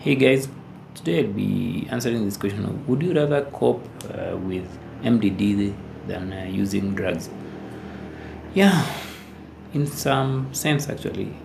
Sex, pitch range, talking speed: male, 95-115 Hz, 130 wpm